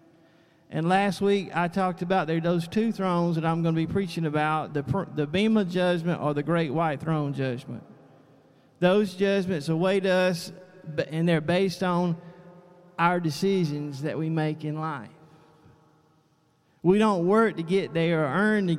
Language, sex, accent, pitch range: English, male, American, 160-195 Hz